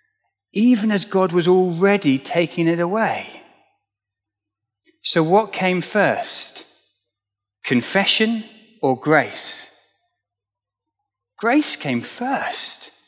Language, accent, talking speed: English, British, 85 wpm